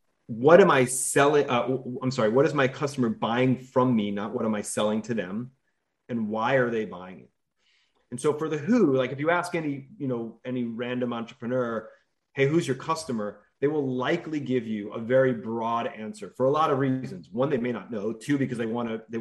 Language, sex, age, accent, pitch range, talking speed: English, male, 30-49, American, 115-140 Hz, 220 wpm